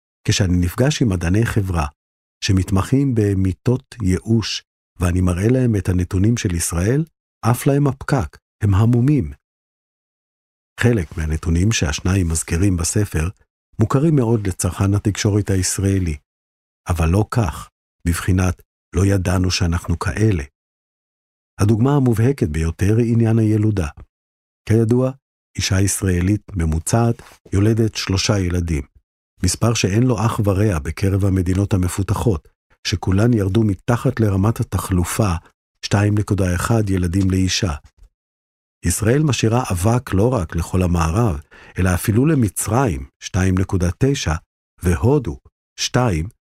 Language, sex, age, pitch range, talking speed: Hebrew, male, 50-69, 85-115 Hz, 105 wpm